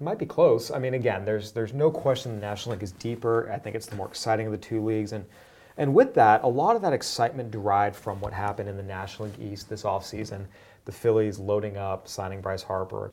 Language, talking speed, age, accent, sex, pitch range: English, 240 wpm, 30-49, American, male, 100-125 Hz